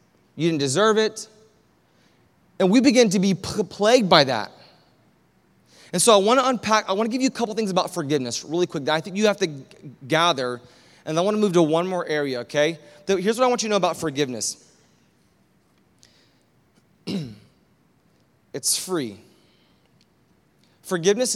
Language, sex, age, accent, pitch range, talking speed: English, male, 20-39, American, 135-195 Hz, 165 wpm